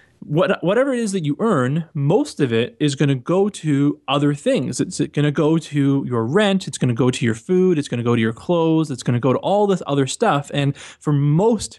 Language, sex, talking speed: English, male, 255 wpm